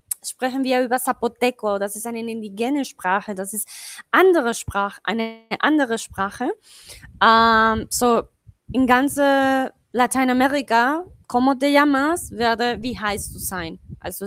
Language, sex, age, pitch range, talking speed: Spanish, female, 20-39, 230-310 Hz, 125 wpm